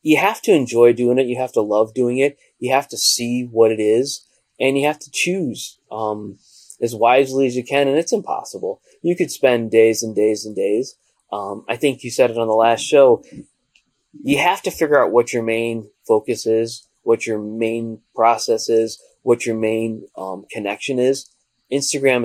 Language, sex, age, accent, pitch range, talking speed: English, male, 20-39, American, 110-130 Hz, 195 wpm